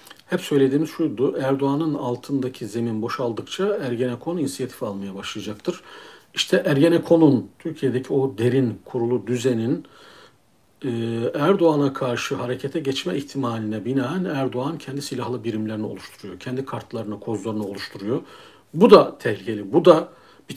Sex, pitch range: male, 115-140 Hz